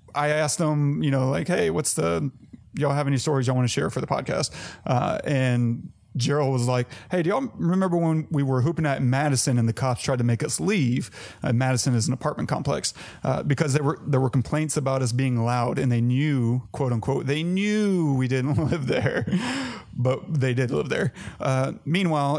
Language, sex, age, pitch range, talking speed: English, male, 30-49, 125-145 Hz, 210 wpm